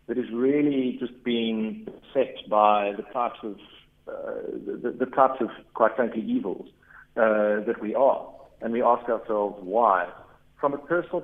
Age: 50-69